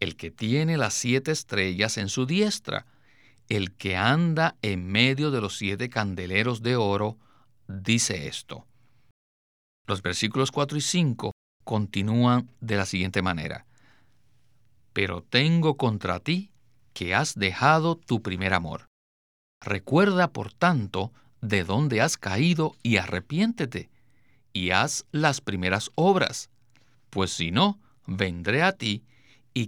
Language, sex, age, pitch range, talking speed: Spanish, male, 50-69, 100-140 Hz, 125 wpm